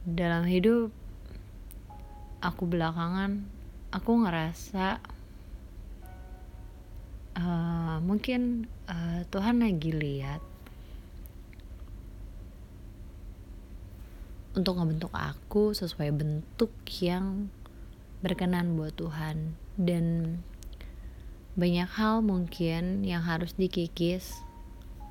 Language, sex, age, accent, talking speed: Indonesian, female, 20-39, native, 65 wpm